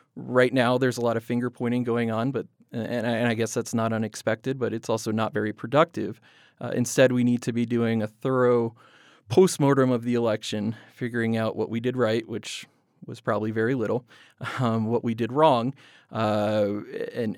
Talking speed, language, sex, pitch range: 190 wpm, English, male, 110-120 Hz